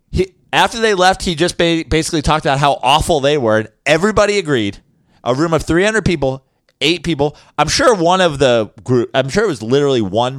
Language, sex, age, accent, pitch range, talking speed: English, male, 30-49, American, 110-170 Hz, 195 wpm